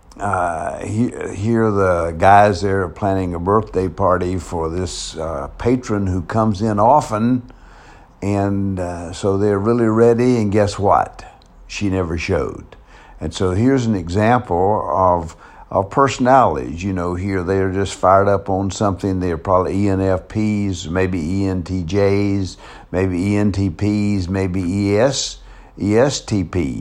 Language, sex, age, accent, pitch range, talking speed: English, male, 60-79, American, 90-105 Hz, 130 wpm